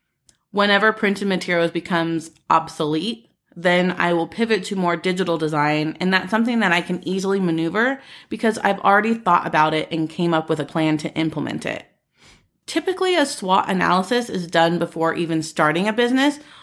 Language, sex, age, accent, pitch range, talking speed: English, female, 30-49, American, 165-205 Hz, 170 wpm